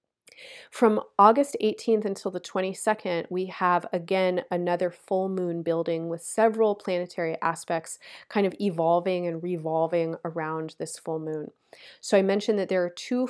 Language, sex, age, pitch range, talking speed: English, female, 30-49, 170-200 Hz, 150 wpm